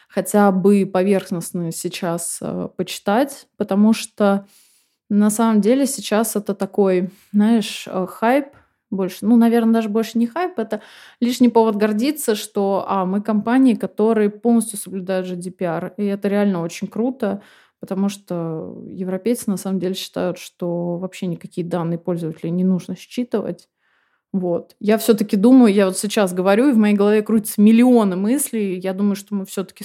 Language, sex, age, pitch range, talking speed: Russian, female, 20-39, 185-220 Hz, 150 wpm